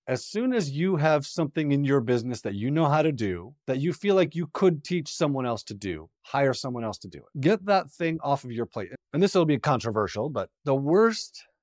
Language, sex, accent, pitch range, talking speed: English, male, American, 130-215 Hz, 245 wpm